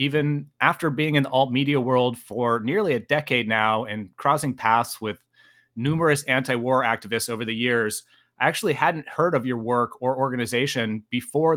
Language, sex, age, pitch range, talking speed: English, male, 30-49, 115-140 Hz, 165 wpm